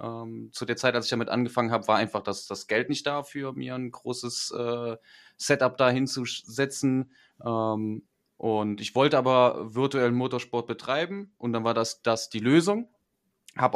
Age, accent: 30-49, German